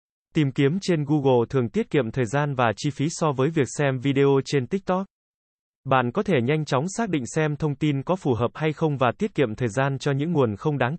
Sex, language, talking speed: male, Vietnamese, 240 wpm